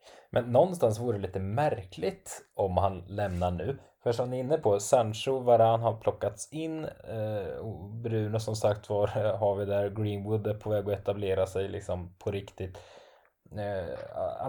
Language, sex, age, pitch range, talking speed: Swedish, male, 20-39, 95-120 Hz, 165 wpm